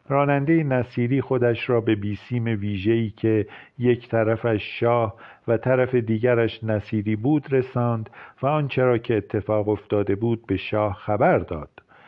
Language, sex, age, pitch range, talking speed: Persian, male, 50-69, 105-125 Hz, 135 wpm